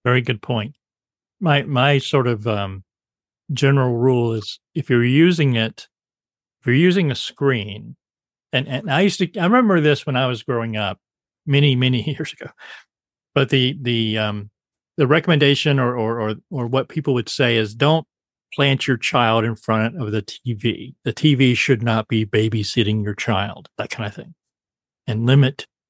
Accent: American